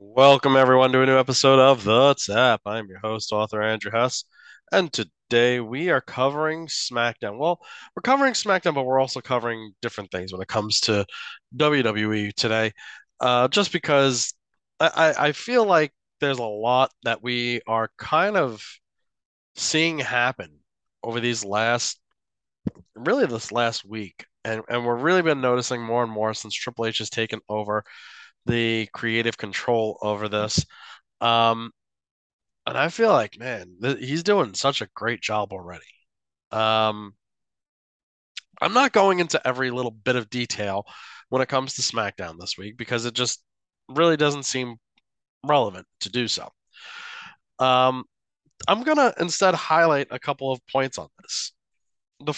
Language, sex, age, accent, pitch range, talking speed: English, male, 20-39, American, 110-140 Hz, 155 wpm